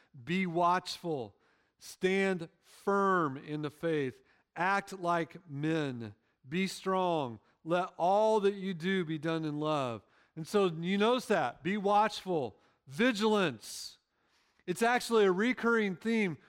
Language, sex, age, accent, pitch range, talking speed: English, male, 40-59, American, 165-205 Hz, 125 wpm